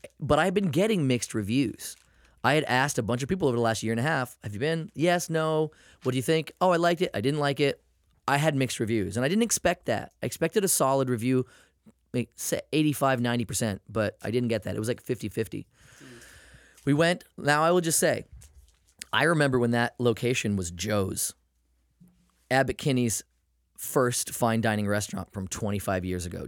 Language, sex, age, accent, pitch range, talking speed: English, male, 20-39, American, 100-135 Hz, 200 wpm